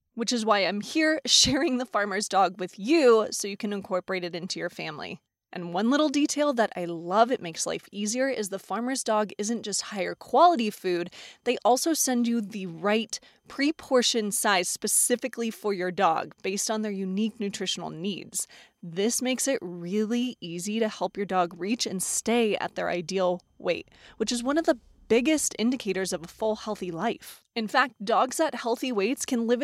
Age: 20-39